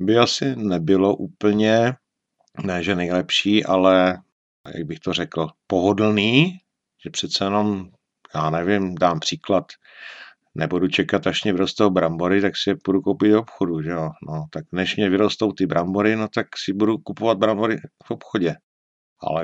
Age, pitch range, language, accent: 50-69, 95-115 Hz, Czech, native